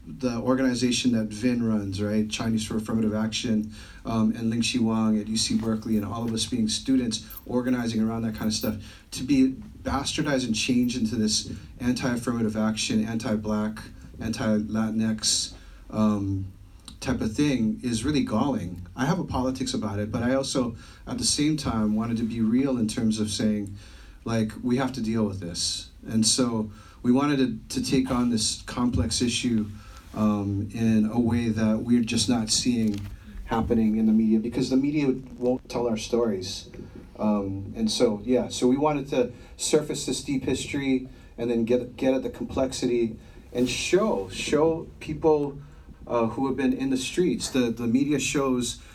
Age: 40-59